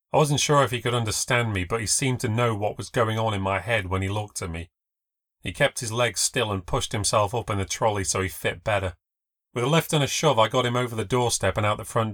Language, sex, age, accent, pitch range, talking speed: English, male, 30-49, British, 105-125 Hz, 280 wpm